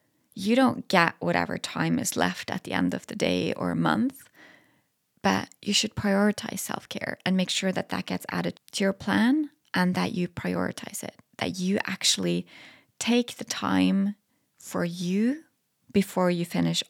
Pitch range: 170-220 Hz